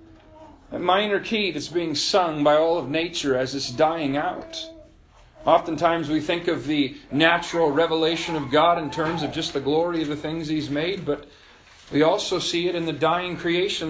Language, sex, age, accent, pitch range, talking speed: English, male, 40-59, American, 145-200 Hz, 185 wpm